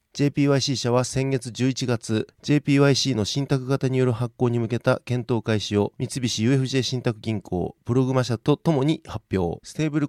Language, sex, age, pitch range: Japanese, male, 40-59, 120-145 Hz